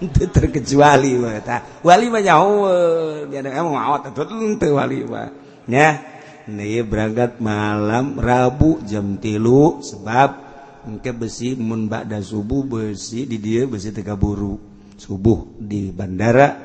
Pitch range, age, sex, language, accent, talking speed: 100-130 Hz, 50-69, male, Indonesian, native, 85 wpm